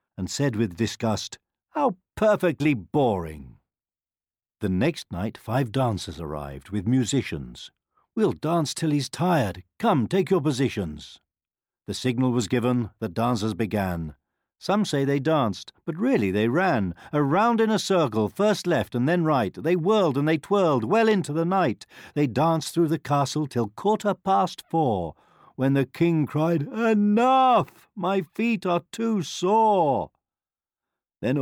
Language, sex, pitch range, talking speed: English, male, 105-175 Hz, 145 wpm